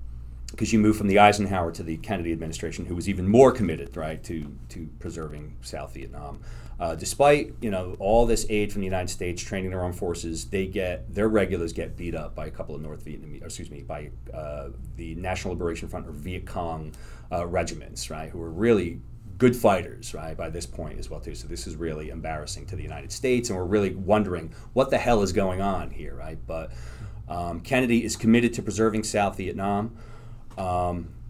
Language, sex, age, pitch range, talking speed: English, male, 30-49, 80-110 Hz, 205 wpm